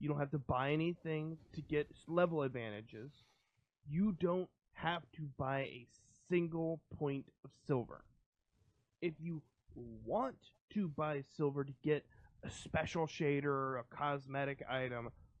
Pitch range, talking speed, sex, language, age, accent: 135-180 Hz, 135 wpm, male, English, 30-49, American